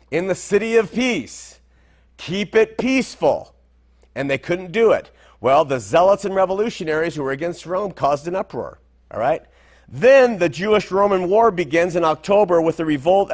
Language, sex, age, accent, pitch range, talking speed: English, male, 50-69, American, 135-195 Hz, 165 wpm